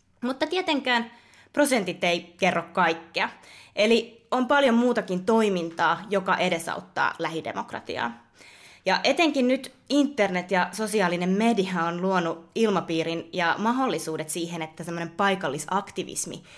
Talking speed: 105 wpm